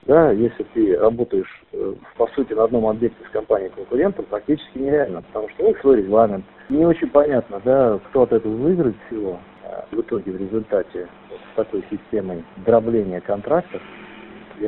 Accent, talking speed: native, 170 wpm